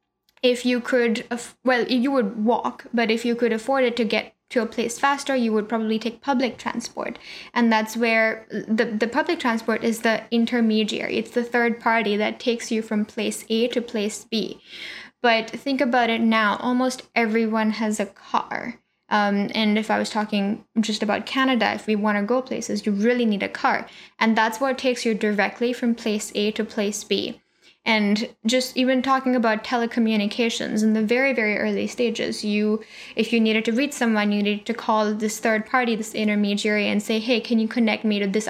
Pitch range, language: 215-240 Hz, English